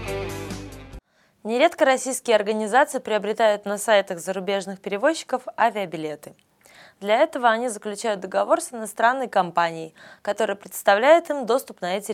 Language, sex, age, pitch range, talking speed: Russian, female, 20-39, 185-260 Hz, 115 wpm